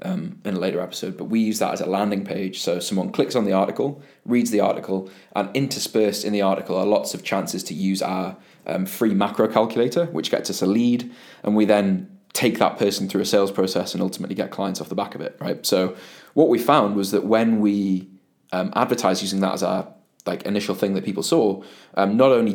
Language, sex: English, male